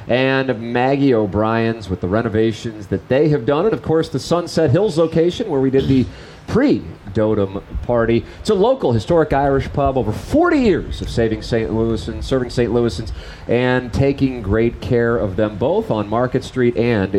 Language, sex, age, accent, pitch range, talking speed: English, male, 30-49, American, 110-140 Hz, 180 wpm